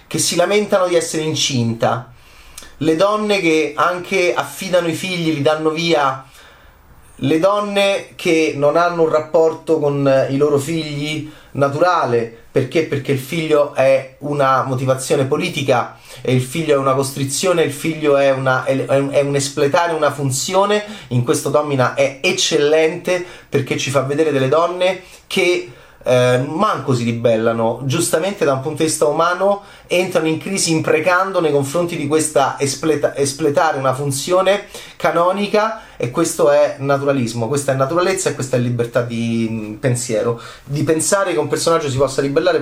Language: Italian